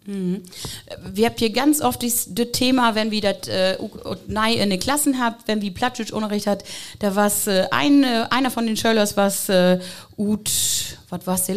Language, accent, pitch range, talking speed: German, German, 200-245 Hz, 175 wpm